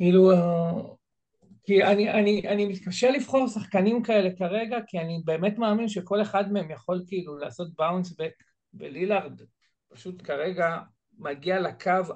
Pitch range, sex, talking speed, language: 165-210 Hz, male, 135 wpm, Hebrew